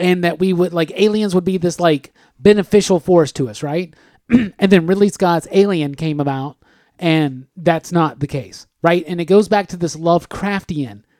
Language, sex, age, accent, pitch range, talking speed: English, male, 30-49, American, 155-195 Hz, 190 wpm